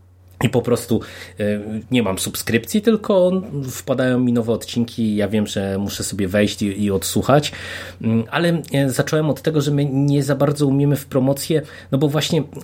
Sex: male